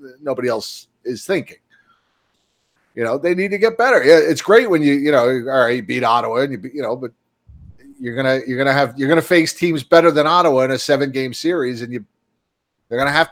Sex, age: male, 40-59